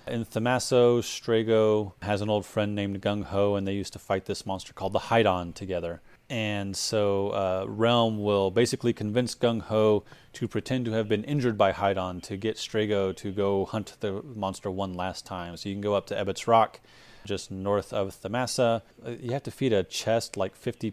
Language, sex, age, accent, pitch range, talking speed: English, male, 30-49, American, 95-115 Hz, 200 wpm